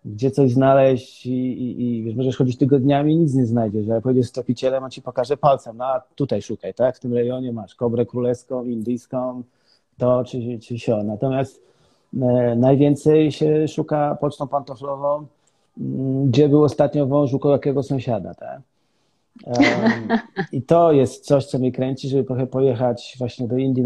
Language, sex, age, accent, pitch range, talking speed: Polish, male, 30-49, native, 115-135 Hz, 165 wpm